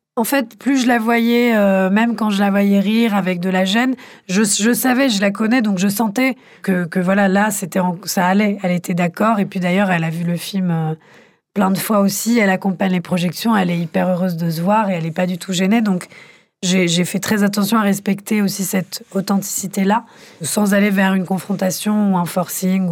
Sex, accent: female, French